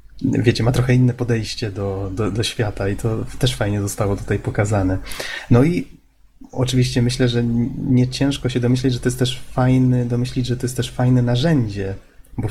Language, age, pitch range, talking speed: Polish, 20-39, 115-130 Hz, 180 wpm